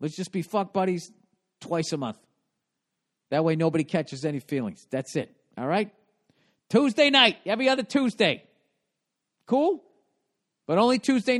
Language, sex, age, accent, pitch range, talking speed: English, male, 40-59, American, 170-220 Hz, 140 wpm